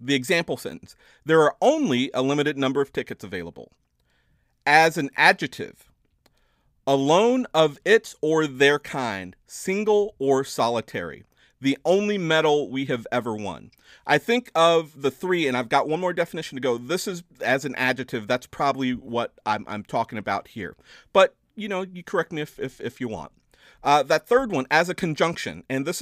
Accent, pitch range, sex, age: American, 125-170 Hz, male, 40-59